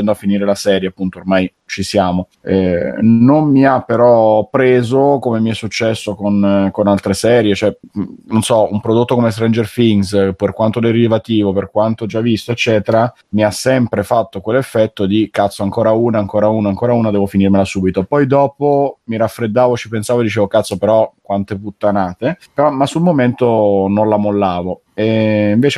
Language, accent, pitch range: Italian, native, 100-115 Hz